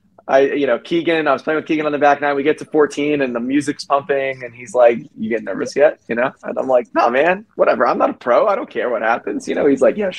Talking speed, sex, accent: 300 wpm, male, American